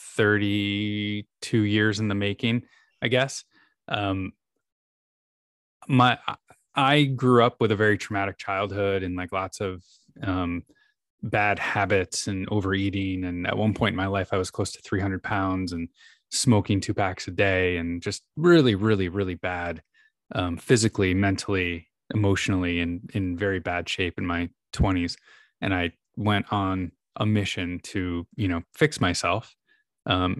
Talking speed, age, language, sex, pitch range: 150 wpm, 20-39, English, male, 95-115 Hz